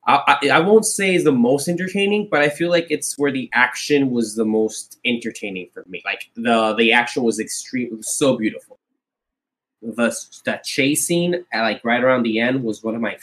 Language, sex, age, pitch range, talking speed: English, male, 10-29, 105-130 Hz, 200 wpm